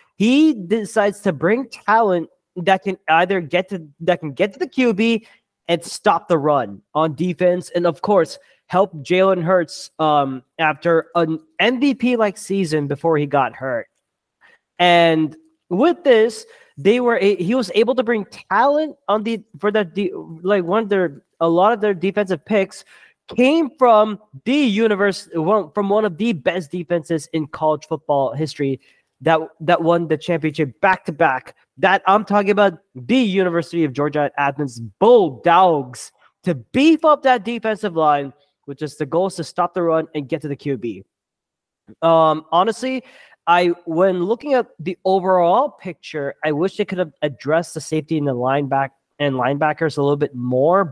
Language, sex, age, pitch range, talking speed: English, male, 20-39, 155-215 Hz, 170 wpm